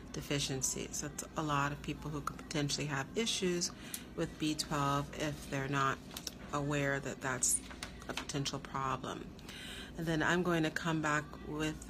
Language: English